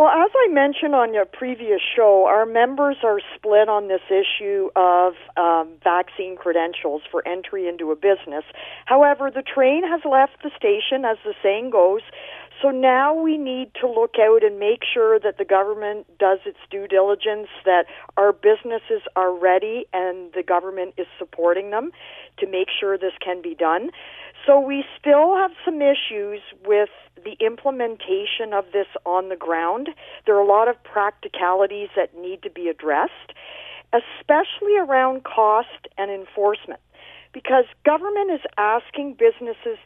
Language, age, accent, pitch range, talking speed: English, 50-69, American, 195-285 Hz, 160 wpm